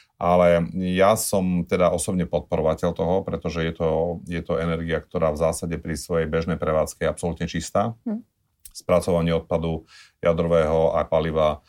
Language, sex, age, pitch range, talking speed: Slovak, male, 30-49, 80-85 Hz, 145 wpm